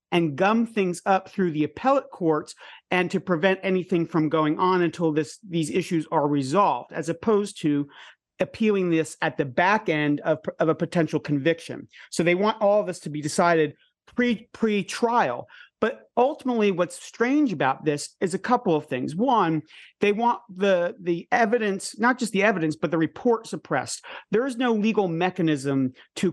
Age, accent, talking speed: 40-59, American, 170 wpm